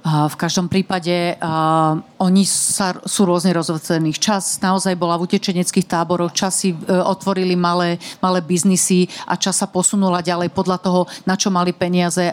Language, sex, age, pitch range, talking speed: Slovak, female, 40-59, 185-210 Hz, 155 wpm